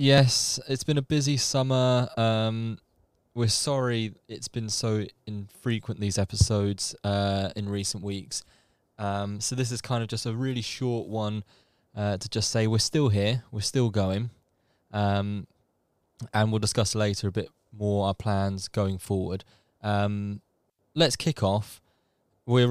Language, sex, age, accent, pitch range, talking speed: English, male, 20-39, British, 100-125 Hz, 150 wpm